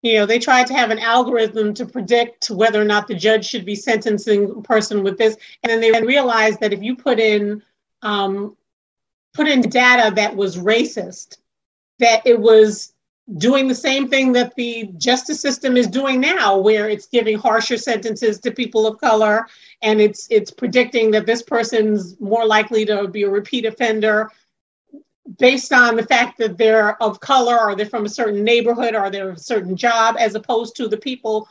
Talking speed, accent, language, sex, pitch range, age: 190 wpm, American, English, female, 210-245 Hz, 40-59